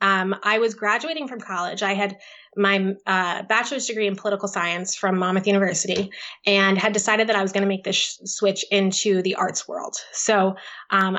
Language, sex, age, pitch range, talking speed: English, female, 20-39, 190-210 Hz, 190 wpm